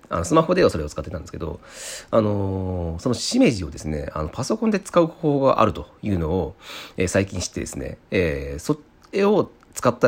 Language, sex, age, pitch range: Japanese, male, 40-59, 85-125 Hz